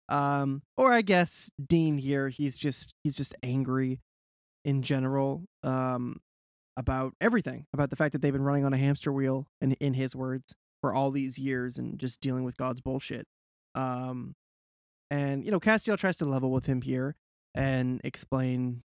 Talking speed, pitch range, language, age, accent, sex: 170 wpm, 125-150 Hz, English, 20-39, American, male